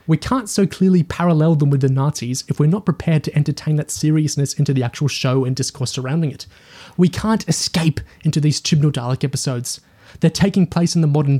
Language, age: English, 20-39